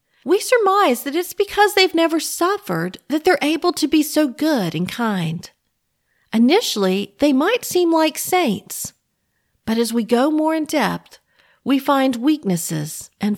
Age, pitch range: 50-69, 200-310 Hz